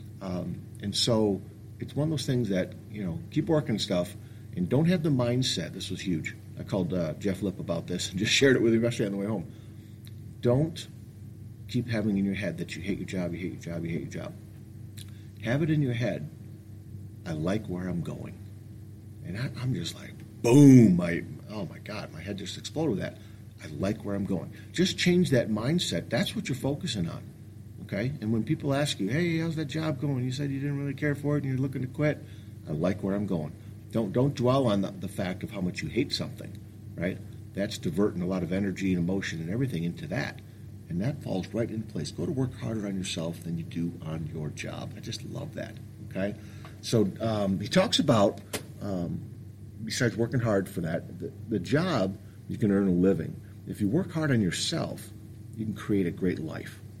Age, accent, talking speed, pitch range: 50-69, American, 215 wpm, 100-120 Hz